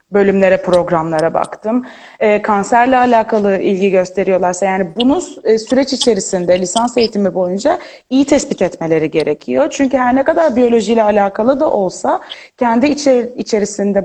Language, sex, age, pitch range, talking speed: Turkish, female, 30-49, 195-260 Hz, 125 wpm